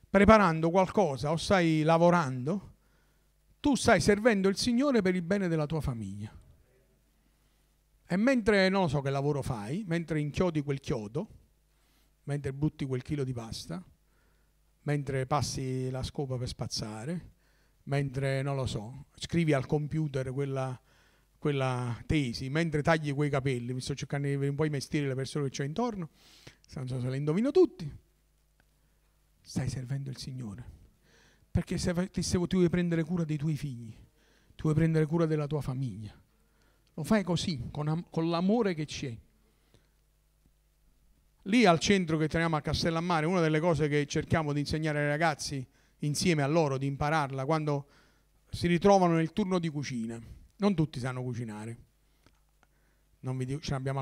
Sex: male